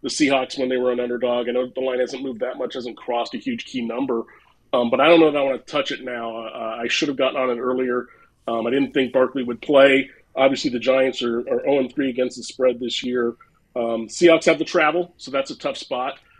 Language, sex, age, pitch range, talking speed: English, male, 30-49, 120-140 Hz, 255 wpm